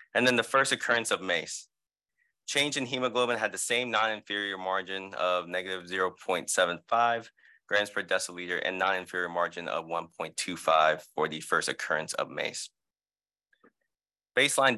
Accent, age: American, 20-39